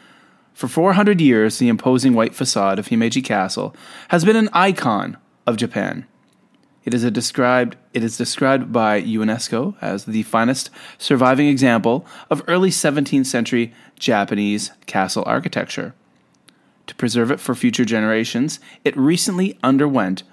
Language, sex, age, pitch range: English, male, 30-49, 110-150 Hz